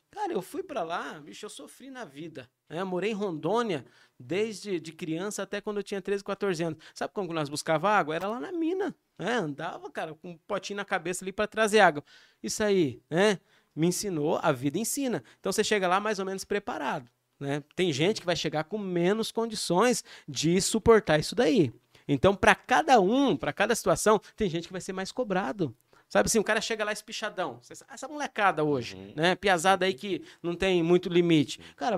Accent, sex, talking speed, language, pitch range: Brazilian, male, 205 wpm, Portuguese, 160-215 Hz